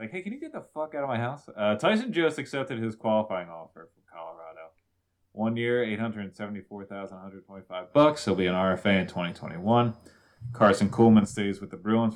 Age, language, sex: 20-39, English, male